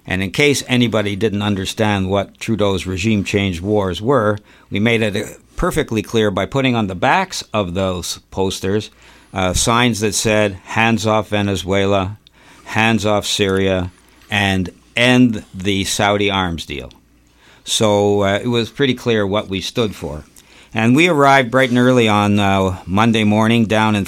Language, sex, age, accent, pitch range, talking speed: English, male, 60-79, American, 95-115 Hz, 155 wpm